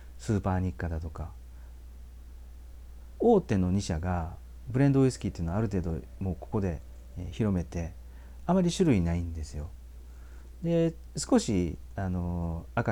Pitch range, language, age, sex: 65-110 Hz, Japanese, 40-59, male